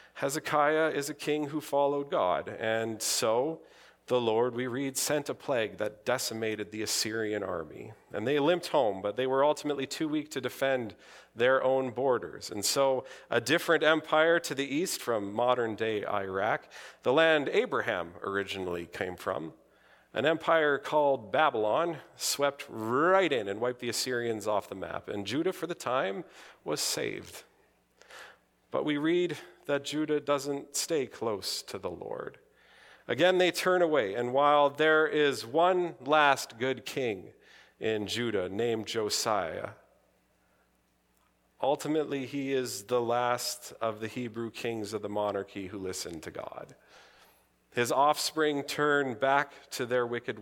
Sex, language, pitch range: male, English, 110-150 Hz